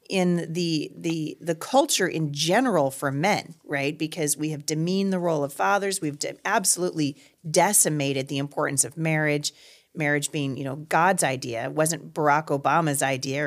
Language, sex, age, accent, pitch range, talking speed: English, female, 40-59, American, 150-195 Hz, 165 wpm